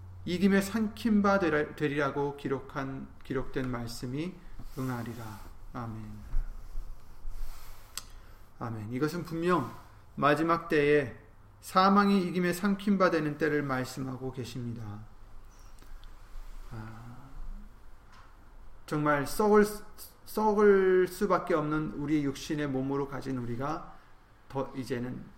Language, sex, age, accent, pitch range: Korean, male, 30-49, native, 110-165 Hz